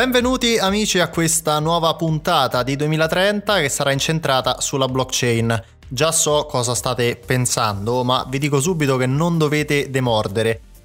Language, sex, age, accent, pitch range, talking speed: Italian, male, 20-39, native, 120-150 Hz, 145 wpm